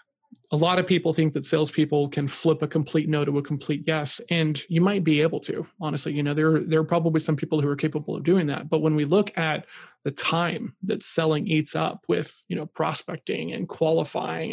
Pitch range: 150-170 Hz